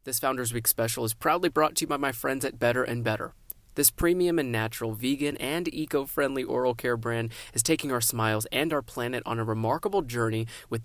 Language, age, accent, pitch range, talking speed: English, 20-39, American, 115-140 Hz, 210 wpm